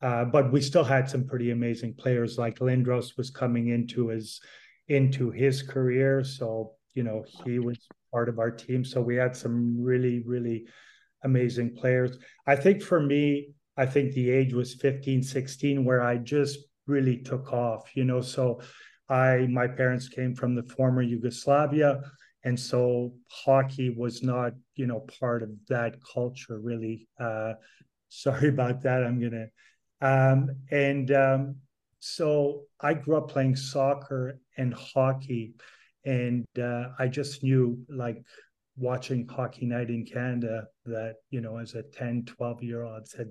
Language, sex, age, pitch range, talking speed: English, male, 40-59, 120-135 Hz, 160 wpm